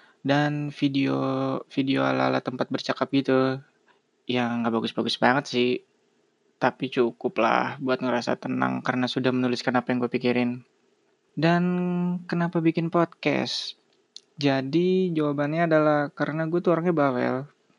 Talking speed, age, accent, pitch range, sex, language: 120 wpm, 20-39, native, 130-145 Hz, male, Indonesian